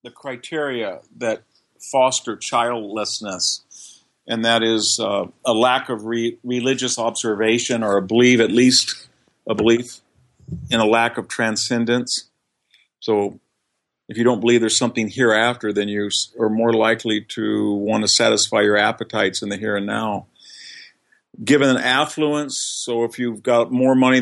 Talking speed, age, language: 145 wpm, 50-69, English